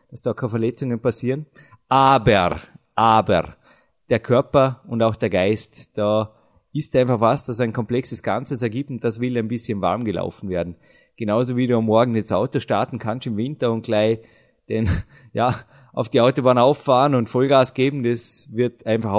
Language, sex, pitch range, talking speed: German, male, 115-135 Hz, 170 wpm